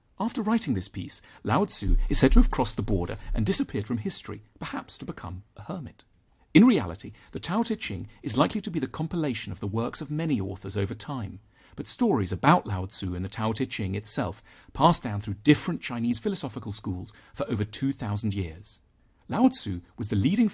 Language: English